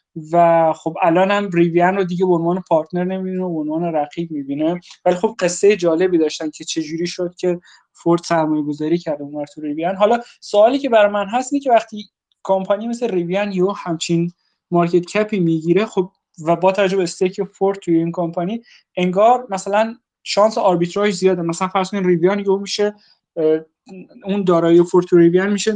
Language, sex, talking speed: Persian, male, 170 wpm